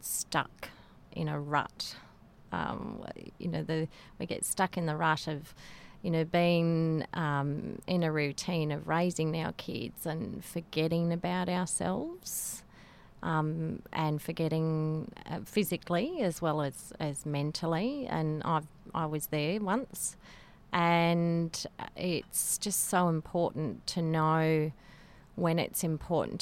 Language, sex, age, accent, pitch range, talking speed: English, female, 30-49, Australian, 150-175 Hz, 125 wpm